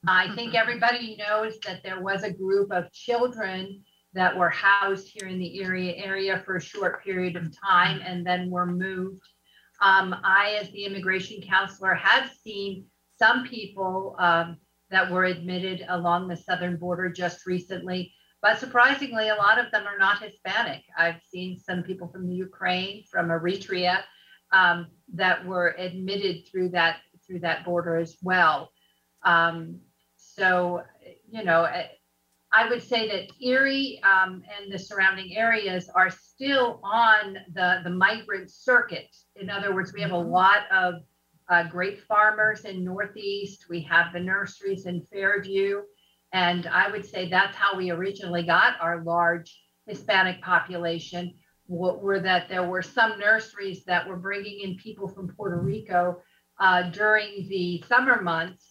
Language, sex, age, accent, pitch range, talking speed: English, female, 50-69, American, 180-200 Hz, 150 wpm